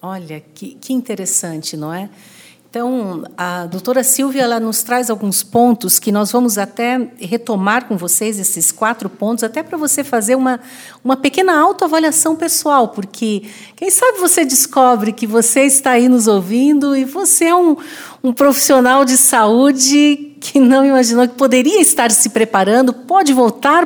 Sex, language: female, Portuguese